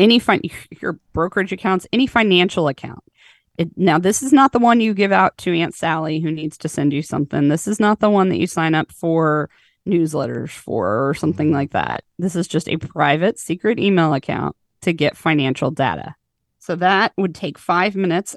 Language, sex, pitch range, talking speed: English, female, 155-195 Hz, 195 wpm